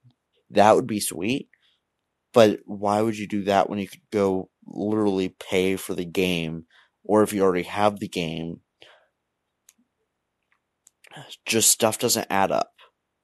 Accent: American